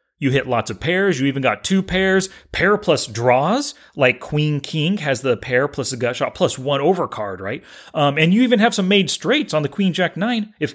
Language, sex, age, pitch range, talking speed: English, male, 30-49, 140-200 Hz, 210 wpm